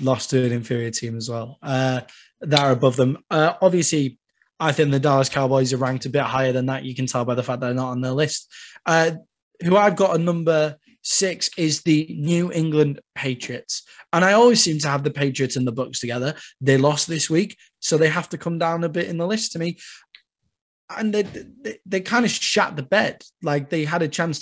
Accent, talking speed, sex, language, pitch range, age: British, 225 wpm, male, English, 135-170 Hz, 20-39